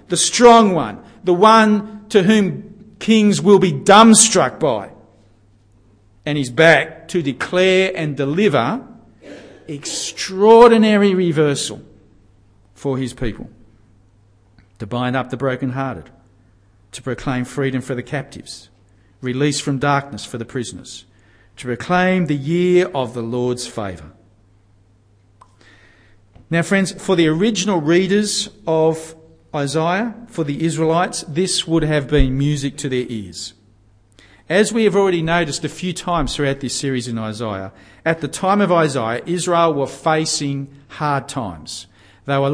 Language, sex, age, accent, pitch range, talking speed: English, male, 50-69, Australian, 115-170 Hz, 130 wpm